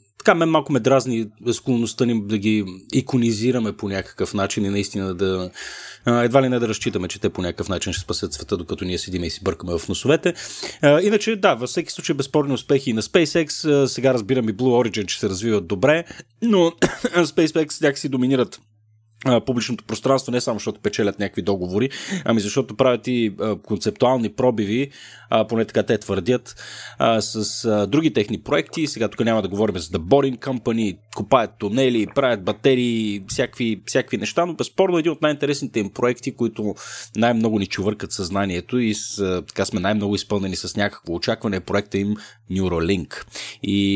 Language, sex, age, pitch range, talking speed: Bulgarian, male, 30-49, 100-130 Hz, 165 wpm